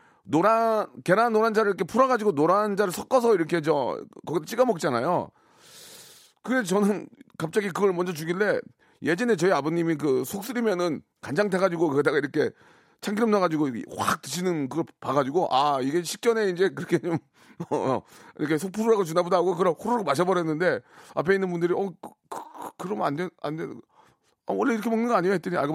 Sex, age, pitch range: male, 40-59, 150-215 Hz